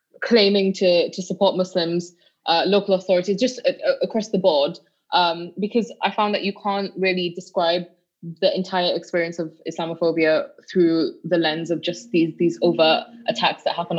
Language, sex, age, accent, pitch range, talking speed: English, female, 20-39, British, 165-185 Hz, 165 wpm